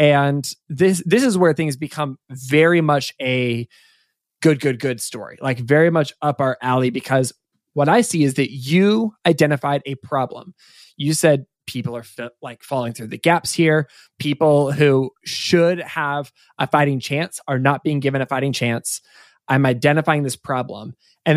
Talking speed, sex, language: 170 wpm, male, English